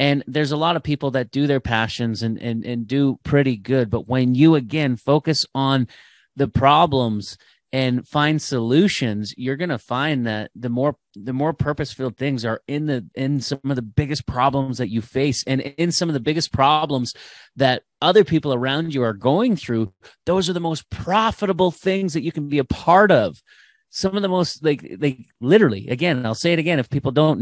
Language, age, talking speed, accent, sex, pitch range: English, 30-49, 200 wpm, American, male, 115-145 Hz